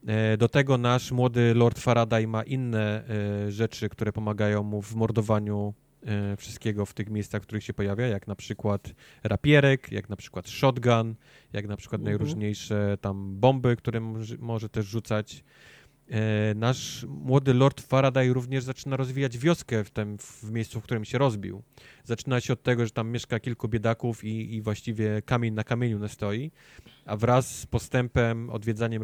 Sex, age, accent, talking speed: male, 20-39, native, 155 wpm